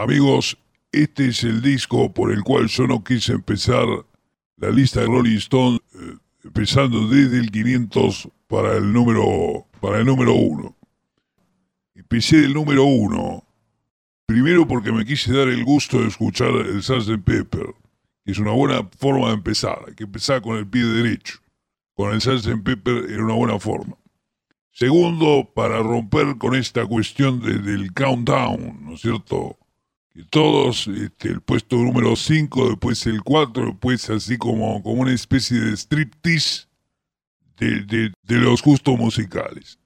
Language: English